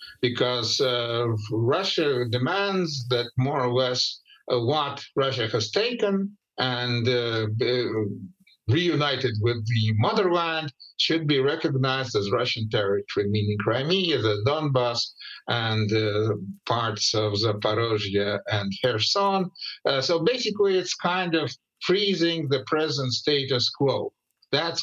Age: 50-69